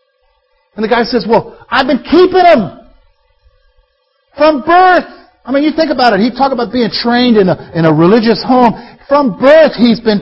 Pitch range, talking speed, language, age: 205-285 Hz, 190 wpm, English, 50-69